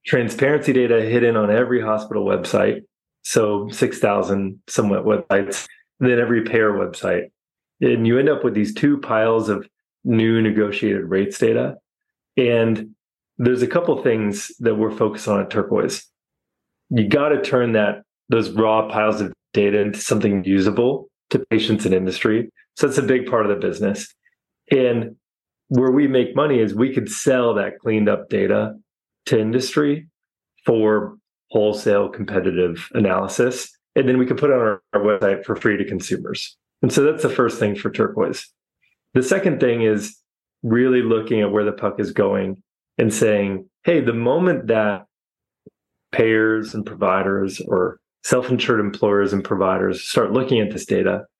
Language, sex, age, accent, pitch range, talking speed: English, male, 30-49, American, 105-125 Hz, 160 wpm